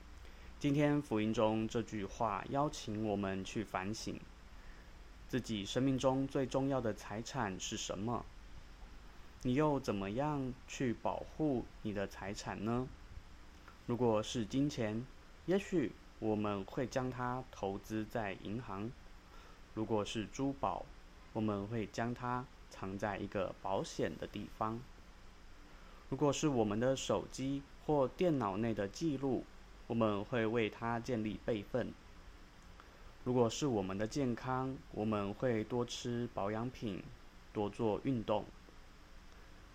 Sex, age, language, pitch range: male, 20-39, Chinese, 100-125 Hz